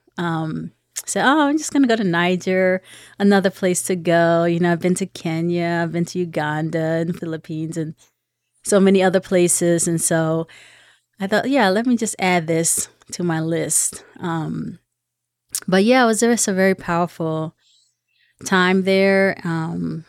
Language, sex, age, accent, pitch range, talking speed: English, female, 30-49, American, 160-185 Hz, 175 wpm